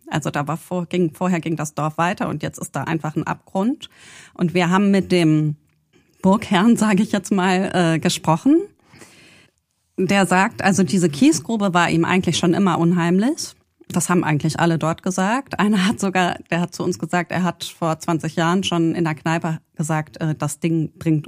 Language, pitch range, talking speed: German, 160-185 Hz, 190 wpm